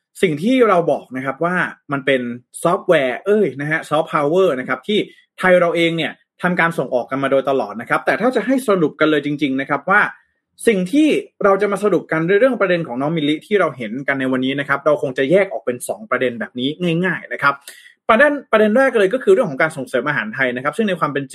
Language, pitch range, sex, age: Thai, 135-185 Hz, male, 20-39